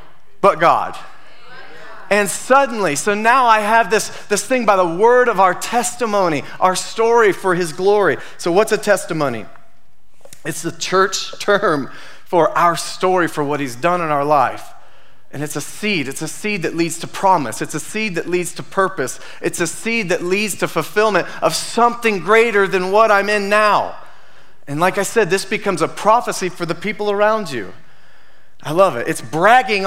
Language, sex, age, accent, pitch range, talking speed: English, male, 30-49, American, 170-215 Hz, 185 wpm